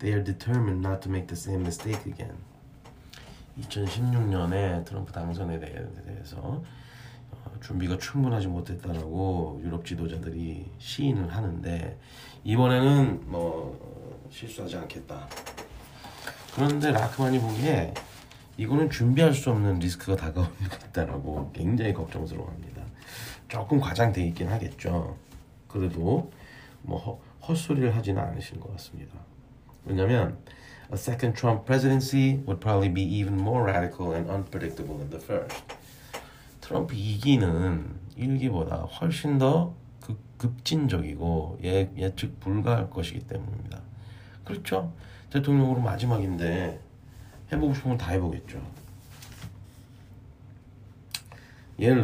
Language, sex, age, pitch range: Korean, male, 40-59, 95-125 Hz